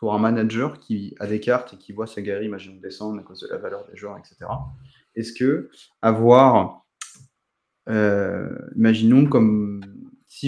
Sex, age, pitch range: male, 20-39, 105-125 Hz